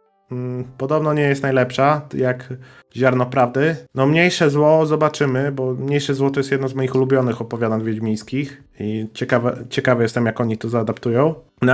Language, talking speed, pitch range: Polish, 160 wpm, 120-140 Hz